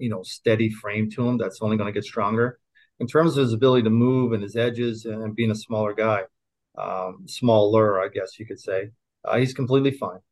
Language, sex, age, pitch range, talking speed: English, male, 40-59, 110-120 Hz, 220 wpm